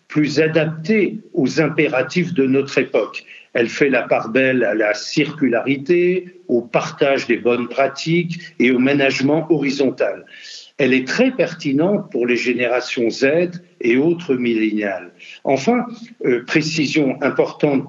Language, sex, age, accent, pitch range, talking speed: French, male, 60-79, French, 135-200 Hz, 130 wpm